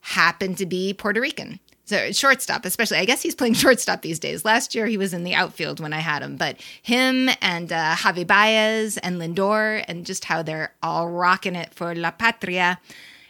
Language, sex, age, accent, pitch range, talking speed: English, female, 20-39, American, 180-235 Hz, 200 wpm